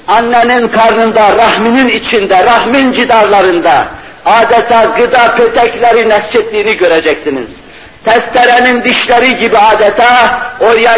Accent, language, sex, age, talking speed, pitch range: native, Turkish, male, 60-79, 85 wpm, 215-240 Hz